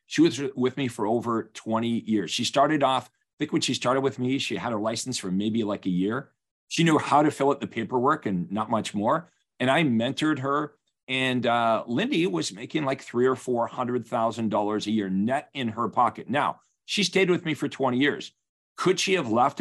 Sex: male